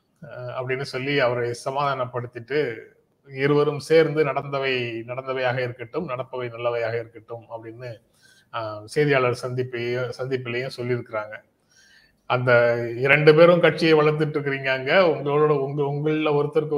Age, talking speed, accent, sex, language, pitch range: 30-49, 100 wpm, native, male, Tamil, 125-150 Hz